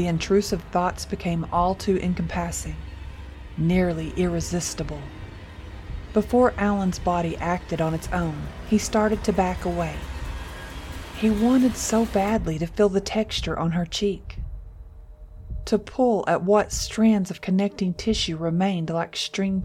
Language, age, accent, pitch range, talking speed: English, 40-59, American, 155-200 Hz, 130 wpm